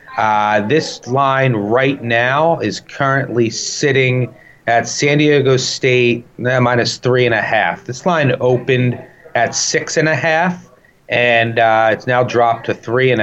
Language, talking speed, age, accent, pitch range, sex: English, 155 wpm, 30-49, American, 110-145 Hz, male